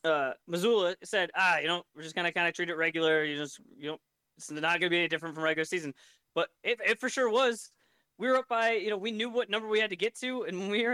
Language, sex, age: English, male, 20-39